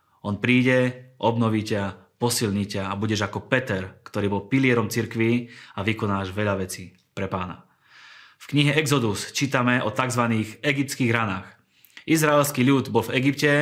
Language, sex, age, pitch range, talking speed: Slovak, male, 20-39, 105-125 Hz, 145 wpm